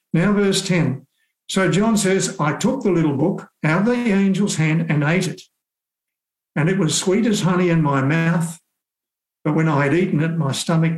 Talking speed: 195 wpm